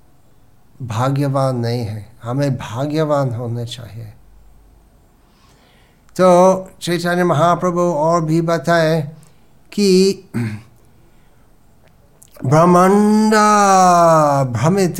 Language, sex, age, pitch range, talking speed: Hindi, male, 60-79, 120-165 Hz, 65 wpm